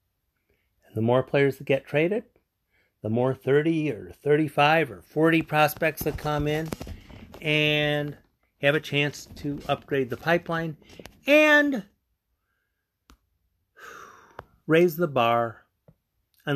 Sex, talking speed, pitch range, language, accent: male, 110 wpm, 95-150 Hz, English, American